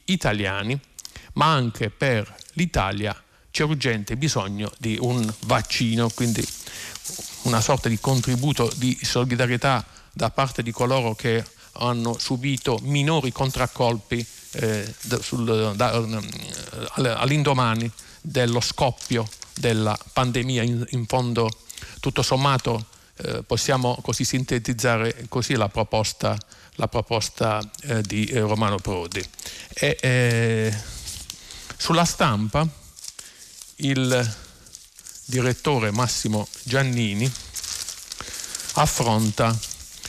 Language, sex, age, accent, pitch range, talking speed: Italian, male, 50-69, native, 110-130 Hz, 95 wpm